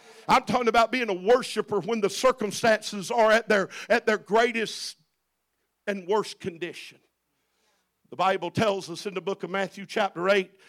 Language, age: English, 50-69